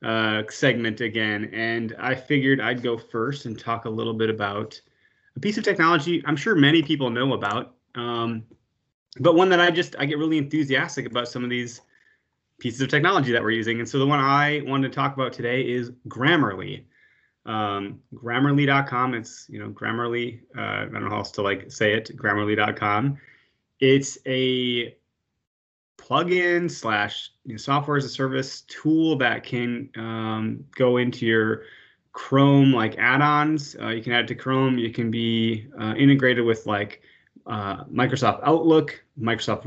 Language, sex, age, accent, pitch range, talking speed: English, male, 20-39, American, 115-140 Hz, 170 wpm